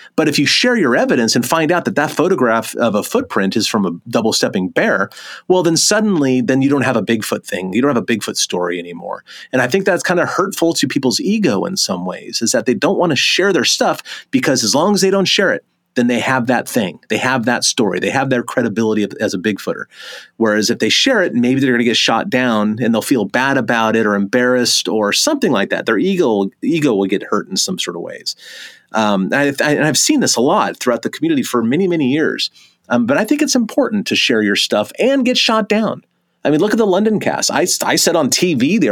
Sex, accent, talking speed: male, American, 245 wpm